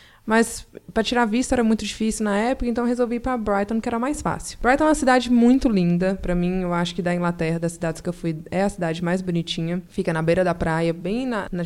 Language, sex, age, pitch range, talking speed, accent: Portuguese, female, 20-39, 175-225 Hz, 250 wpm, Brazilian